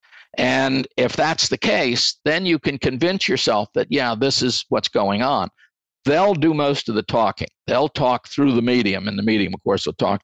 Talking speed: 205 wpm